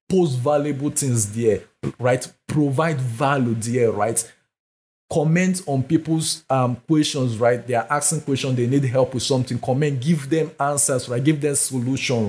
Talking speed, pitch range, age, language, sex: 155 wpm, 115-145 Hz, 50-69, English, male